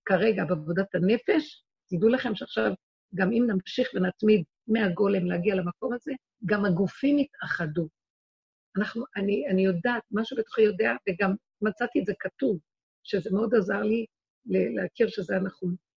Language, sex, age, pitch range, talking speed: Hebrew, female, 50-69, 190-235 Hz, 135 wpm